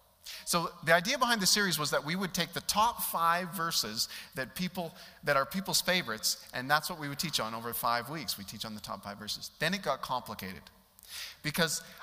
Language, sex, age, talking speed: English, male, 30-49, 215 wpm